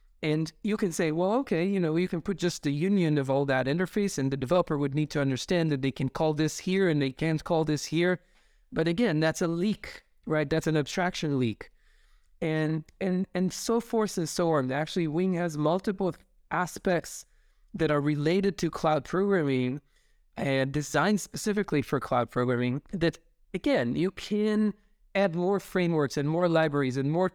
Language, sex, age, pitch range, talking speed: English, male, 20-39, 150-185 Hz, 185 wpm